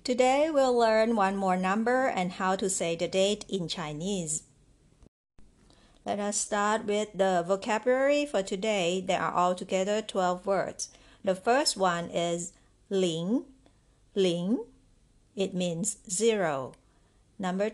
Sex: female